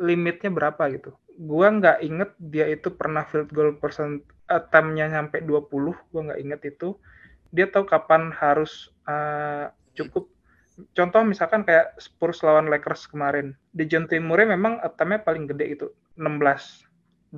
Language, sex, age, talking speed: Indonesian, male, 20-39, 140 wpm